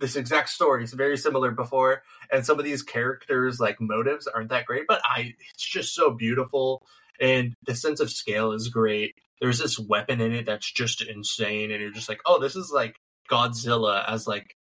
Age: 20-39